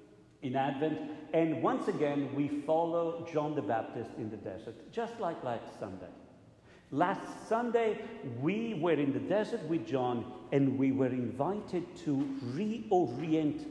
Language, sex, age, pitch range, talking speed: English, male, 50-69, 120-160 Hz, 140 wpm